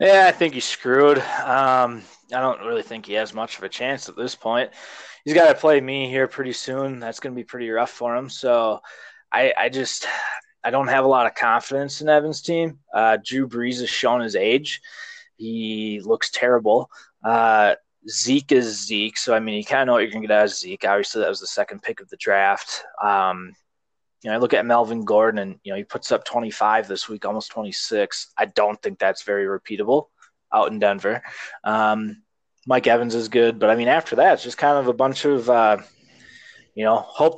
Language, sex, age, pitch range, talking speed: English, male, 20-39, 110-145 Hz, 220 wpm